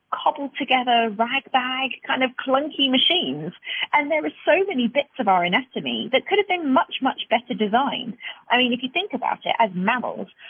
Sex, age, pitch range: female, 30-49, 200-270 Hz